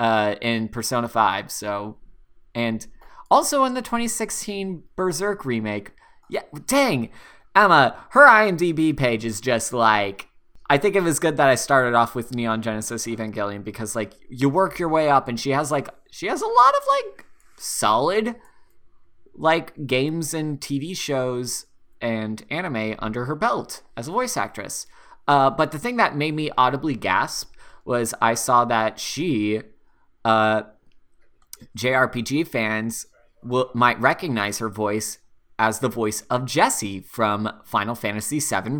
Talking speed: 150 wpm